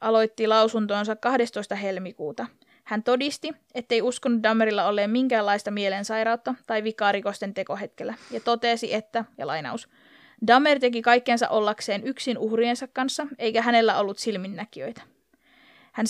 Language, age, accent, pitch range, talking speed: Finnish, 20-39, native, 215-250 Hz, 120 wpm